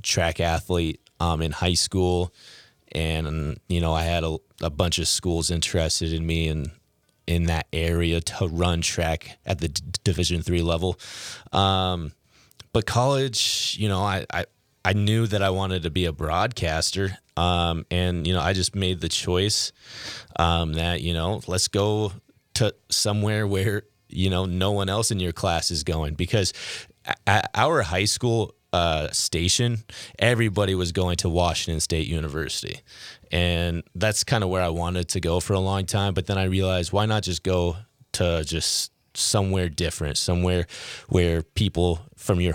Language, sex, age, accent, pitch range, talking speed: English, male, 30-49, American, 85-100 Hz, 170 wpm